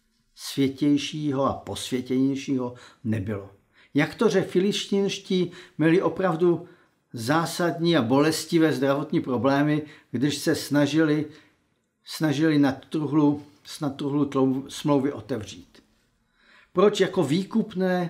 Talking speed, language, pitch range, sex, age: 95 wpm, Czech, 135-175 Hz, male, 50-69